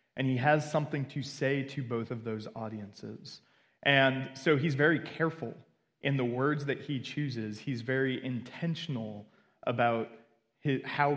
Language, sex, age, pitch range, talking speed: English, male, 20-39, 120-155 Hz, 145 wpm